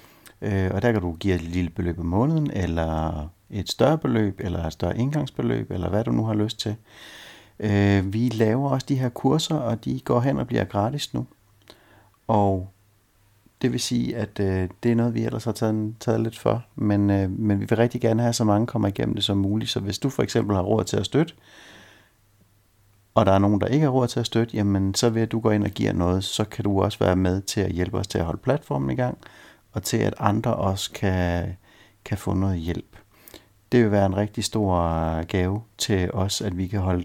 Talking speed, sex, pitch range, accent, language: 220 wpm, male, 95-120 Hz, native, Danish